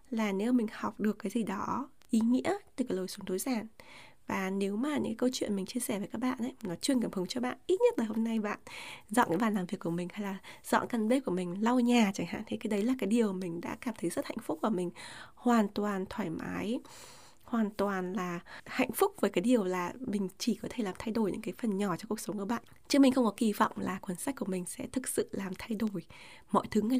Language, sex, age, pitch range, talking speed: Vietnamese, female, 20-39, 190-245 Hz, 275 wpm